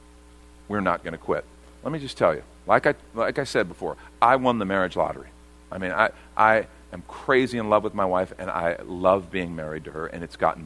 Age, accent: 50-69, American